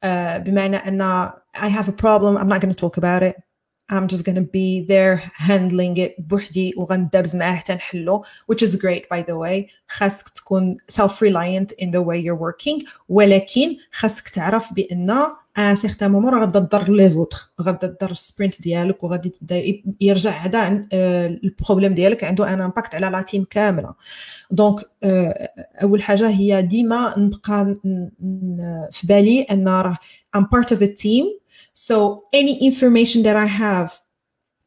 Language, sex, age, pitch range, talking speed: Arabic, female, 30-49, 190-220 Hz, 90 wpm